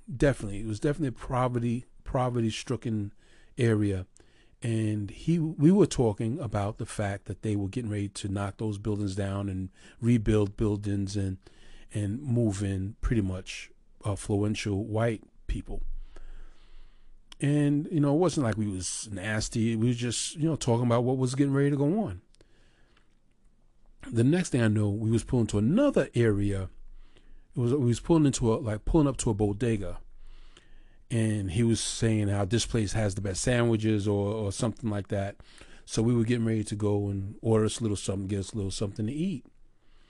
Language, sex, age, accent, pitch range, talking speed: English, male, 40-59, American, 100-125 Hz, 185 wpm